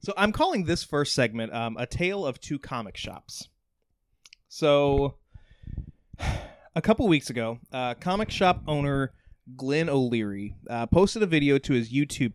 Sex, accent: male, American